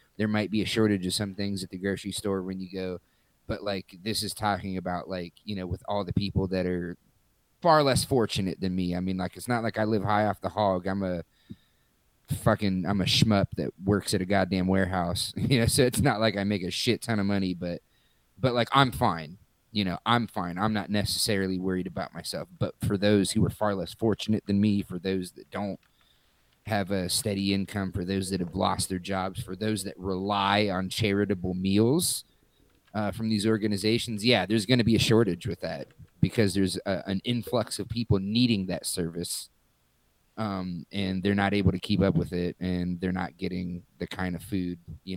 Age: 30-49